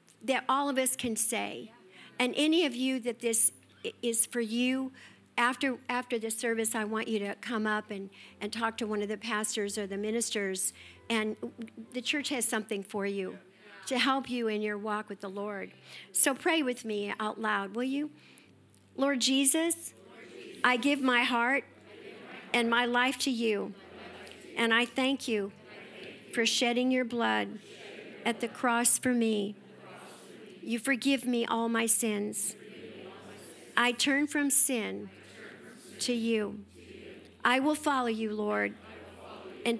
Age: 50-69